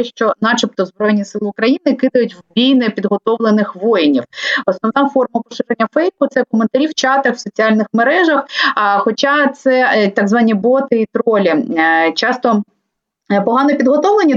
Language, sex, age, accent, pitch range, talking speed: Ukrainian, female, 30-49, native, 215-265 Hz, 135 wpm